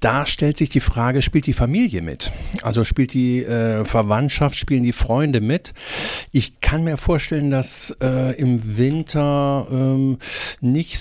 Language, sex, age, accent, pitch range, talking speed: German, male, 50-69, German, 110-140 Hz, 155 wpm